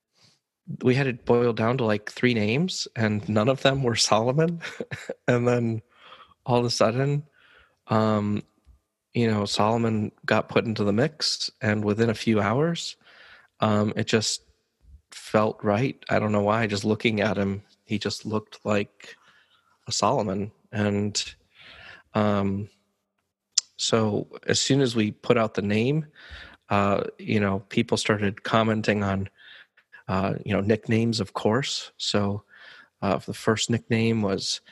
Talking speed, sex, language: 145 wpm, male, English